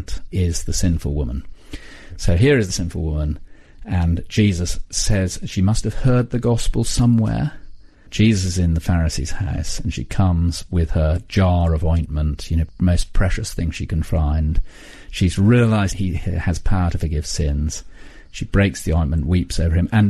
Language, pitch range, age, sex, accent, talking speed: English, 85-100 Hz, 40-59, male, British, 175 wpm